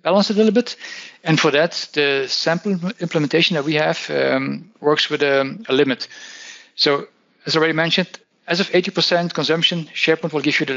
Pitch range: 135-170 Hz